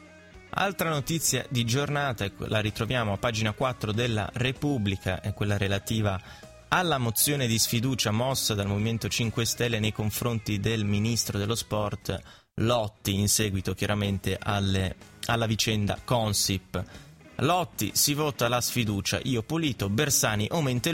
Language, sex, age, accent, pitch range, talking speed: Italian, male, 20-39, native, 100-125 Hz, 130 wpm